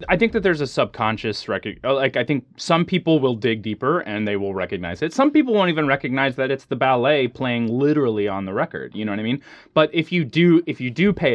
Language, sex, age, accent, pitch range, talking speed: English, male, 20-39, American, 105-140 Hz, 250 wpm